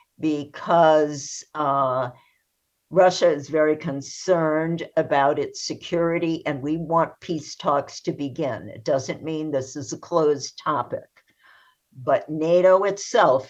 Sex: female